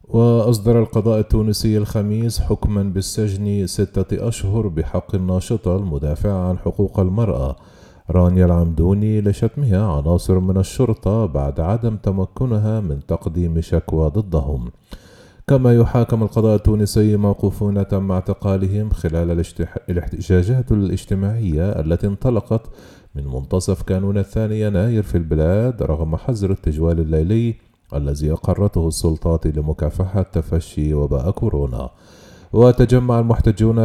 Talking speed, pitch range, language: 105 wpm, 85-110 Hz, Arabic